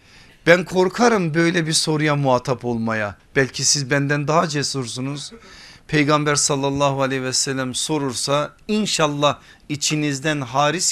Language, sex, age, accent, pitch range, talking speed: Turkish, male, 50-69, native, 120-155 Hz, 115 wpm